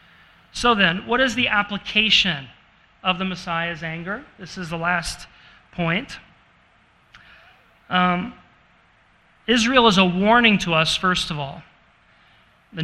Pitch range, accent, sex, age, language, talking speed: 170-210 Hz, American, male, 40-59, English, 120 wpm